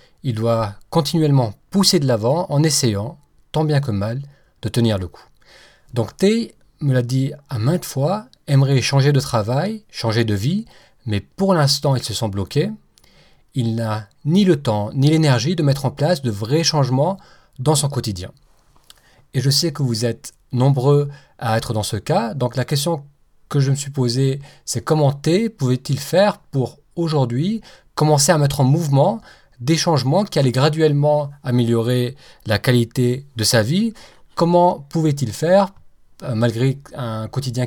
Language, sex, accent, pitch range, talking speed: English, male, French, 125-160 Hz, 165 wpm